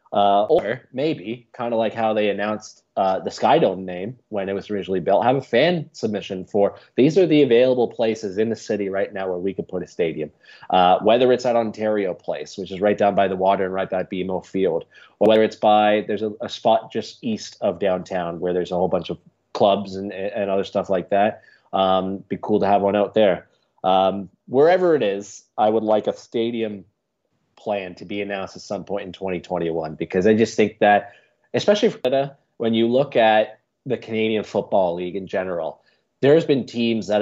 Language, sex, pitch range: English, male, 95-115 Hz